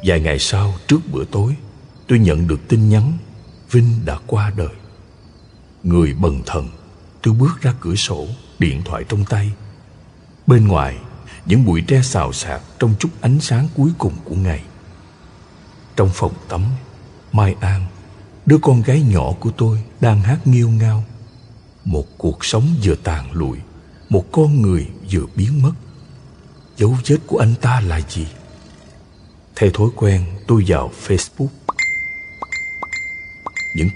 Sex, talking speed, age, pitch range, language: male, 145 wpm, 60-79, 90-125 Hz, Vietnamese